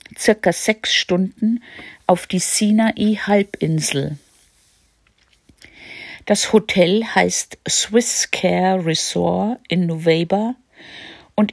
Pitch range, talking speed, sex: 170-205 Hz, 80 wpm, female